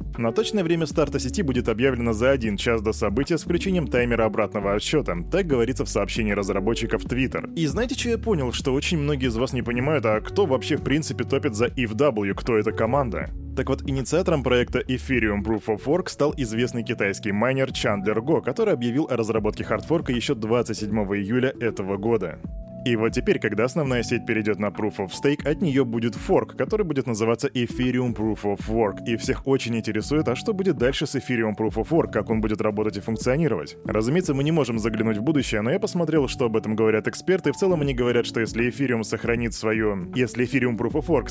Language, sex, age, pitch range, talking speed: Russian, male, 20-39, 110-140 Hz, 185 wpm